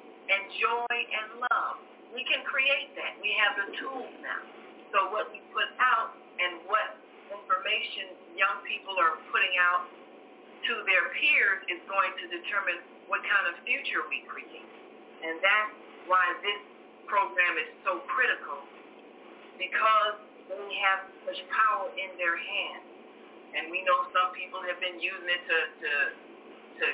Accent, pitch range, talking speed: American, 180-220 Hz, 150 wpm